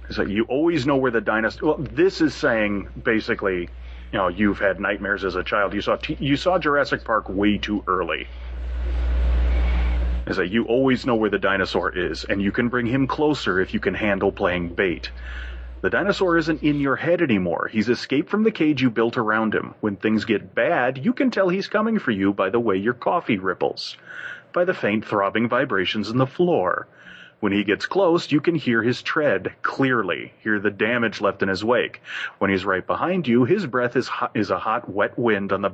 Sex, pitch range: male, 100-155 Hz